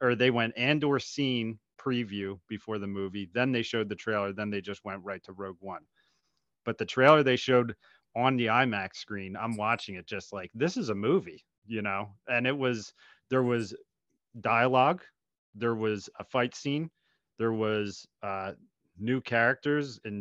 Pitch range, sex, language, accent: 105-130 Hz, male, English, American